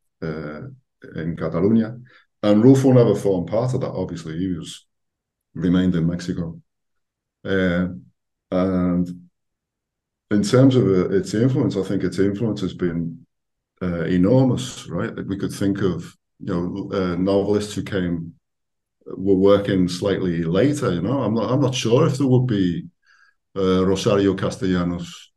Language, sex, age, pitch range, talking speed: English, male, 50-69, 90-105 Hz, 140 wpm